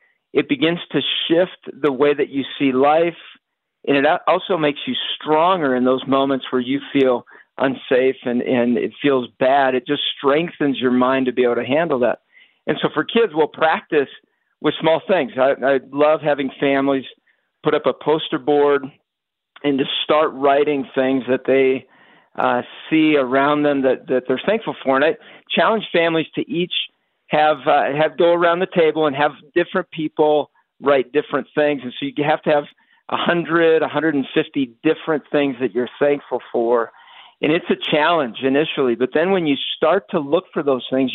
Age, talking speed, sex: 50-69, 180 wpm, male